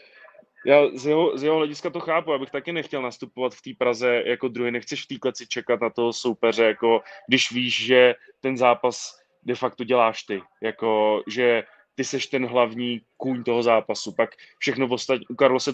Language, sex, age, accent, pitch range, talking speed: Czech, male, 20-39, native, 120-140 Hz, 185 wpm